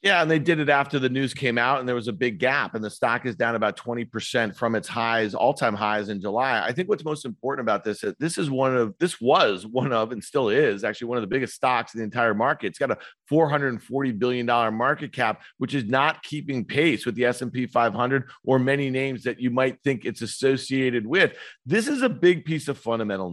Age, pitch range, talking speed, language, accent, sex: 40-59, 125-160 Hz, 255 wpm, English, American, male